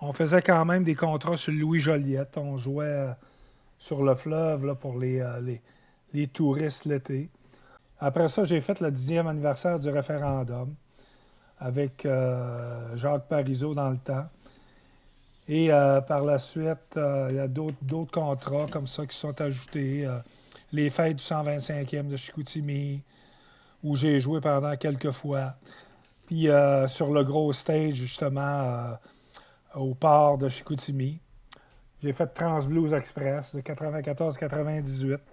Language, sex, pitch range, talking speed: French, male, 135-155 Hz, 150 wpm